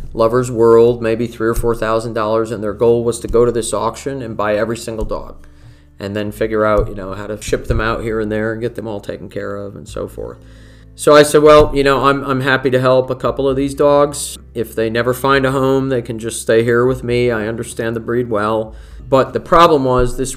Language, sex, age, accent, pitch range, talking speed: English, male, 40-59, American, 110-130 Hz, 250 wpm